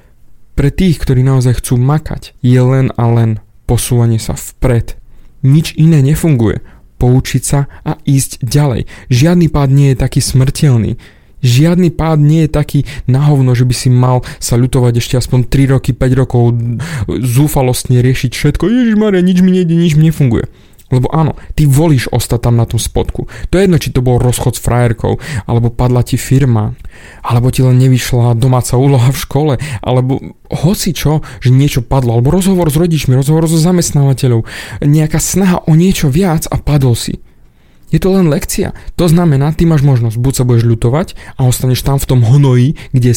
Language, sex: Slovak, male